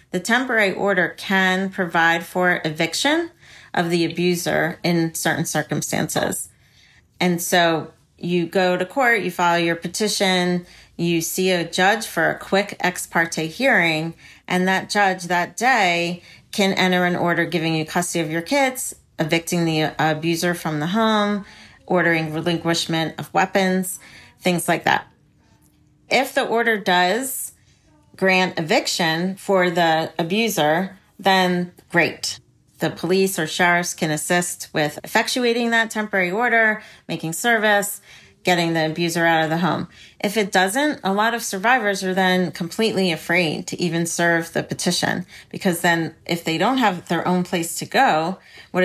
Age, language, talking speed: 40-59, English, 145 wpm